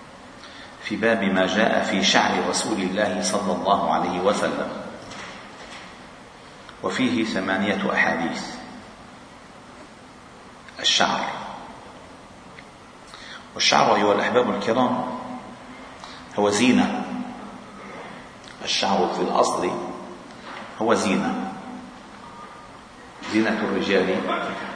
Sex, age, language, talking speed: male, 50-69, Arabic, 70 wpm